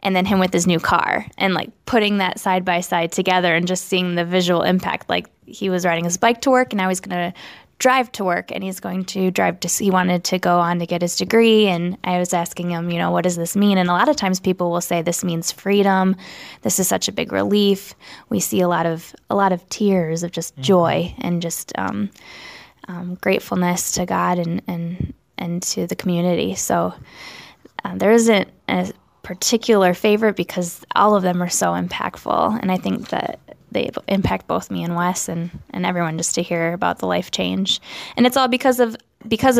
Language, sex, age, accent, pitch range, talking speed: English, female, 10-29, American, 175-205 Hz, 220 wpm